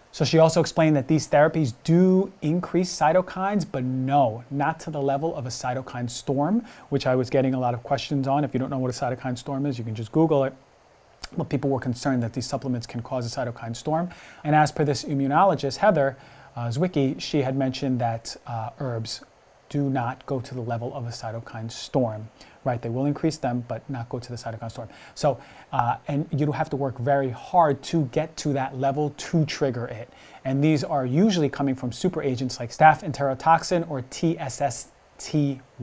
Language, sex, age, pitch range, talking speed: English, male, 30-49, 125-150 Hz, 205 wpm